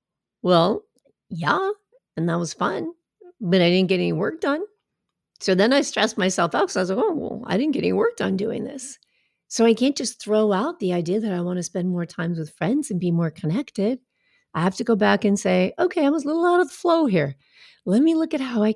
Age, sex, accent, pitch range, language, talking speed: 40-59, female, American, 185-255 Hz, English, 245 wpm